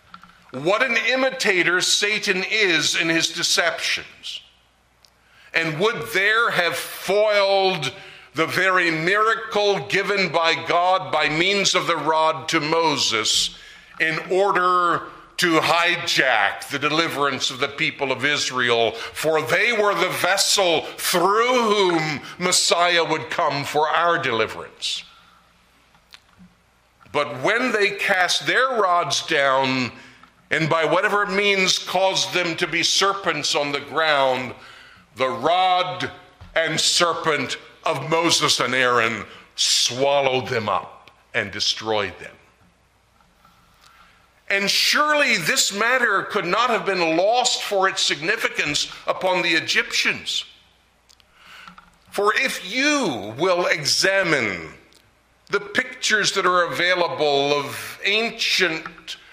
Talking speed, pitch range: 110 wpm, 150-195 Hz